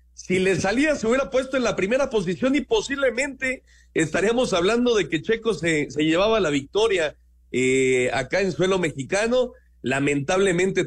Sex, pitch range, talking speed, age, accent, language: male, 135-195 Hz, 155 wpm, 40-59, Mexican, Spanish